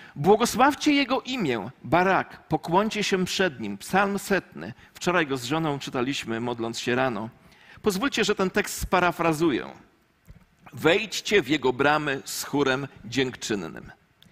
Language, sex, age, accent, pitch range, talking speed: Polish, male, 40-59, native, 155-220 Hz, 125 wpm